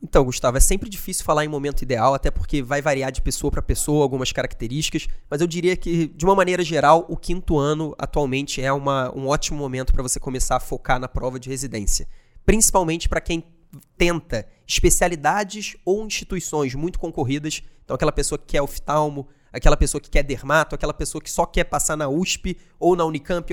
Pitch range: 145-170 Hz